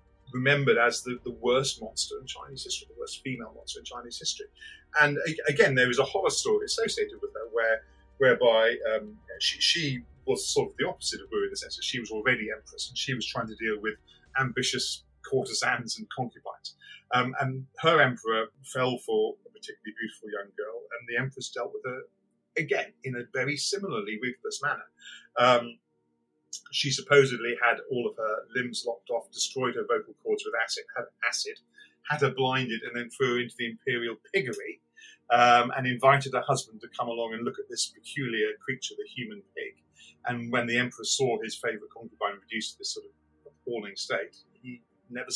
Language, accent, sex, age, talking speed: English, British, male, 40-59, 190 wpm